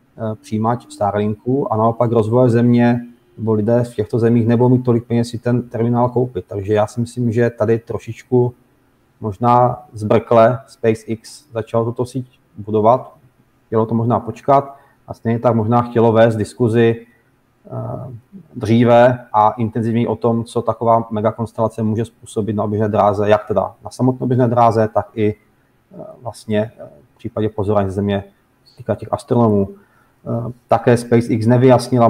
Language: Czech